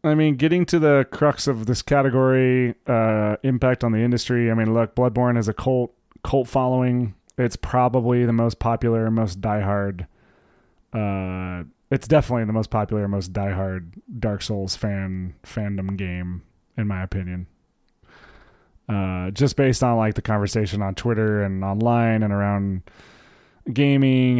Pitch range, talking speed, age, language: 105-125 Hz, 150 wpm, 30-49, English